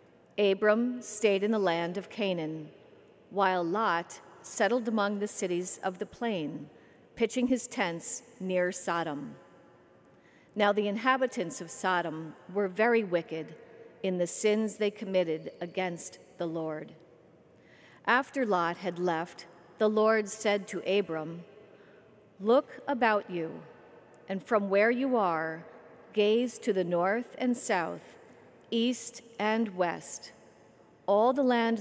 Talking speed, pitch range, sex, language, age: 125 wpm, 180-230 Hz, female, English, 50-69